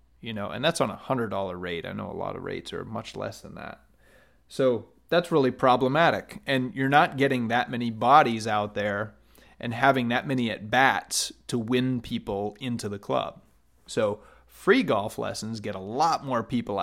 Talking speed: 185 wpm